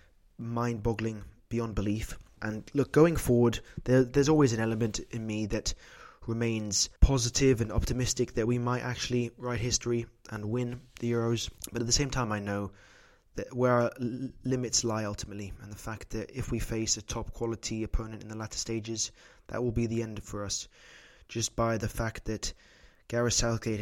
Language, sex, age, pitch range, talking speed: English, male, 20-39, 105-120 Hz, 175 wpm